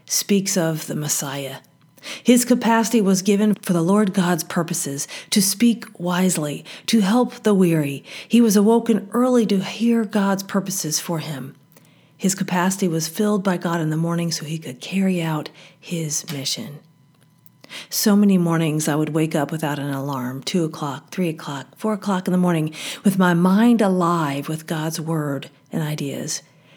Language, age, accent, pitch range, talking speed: English, 40-59, American, 160-200 Hz, 165 wpm